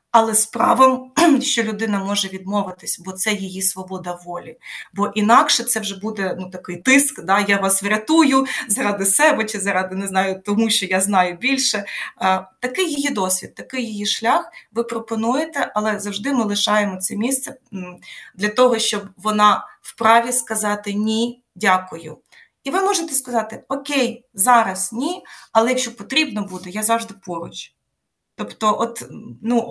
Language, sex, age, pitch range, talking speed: Ukrainian, female, 20-39, 200-260 Hz, 150 wpm